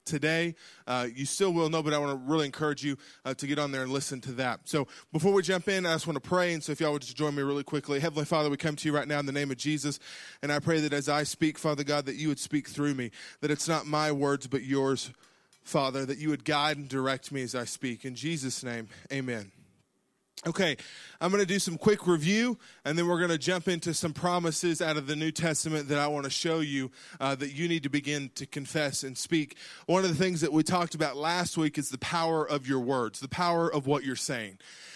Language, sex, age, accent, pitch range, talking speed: English, male, 20-39, American, 145-180 Hz, 265 wpm